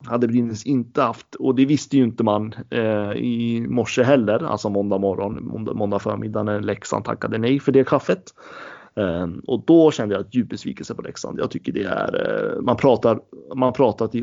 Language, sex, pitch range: Swedish, male, 105-130 Hz